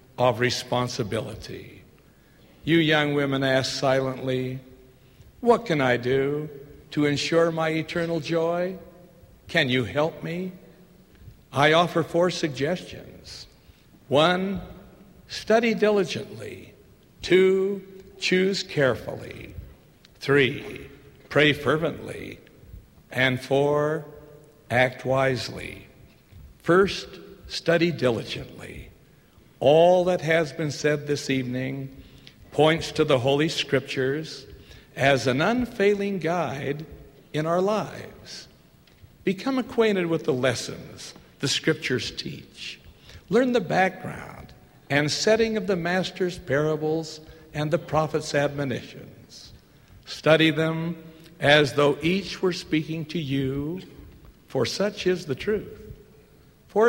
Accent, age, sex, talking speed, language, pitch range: American, 60-79, male, 100 wpm, English, 135-175 Hz